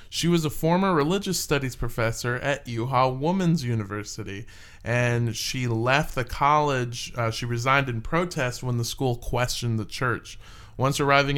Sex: male